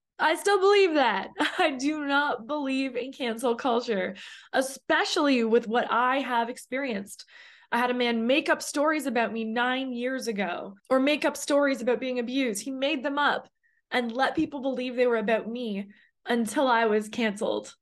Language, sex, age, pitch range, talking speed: English, female, 20-39, 225-285 Hz, 175 wpm